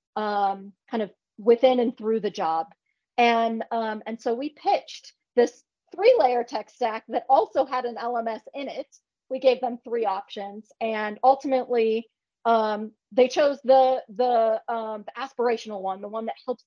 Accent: American